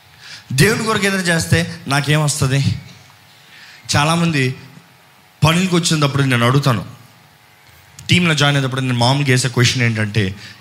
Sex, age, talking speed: male, 20-39, 100 wpm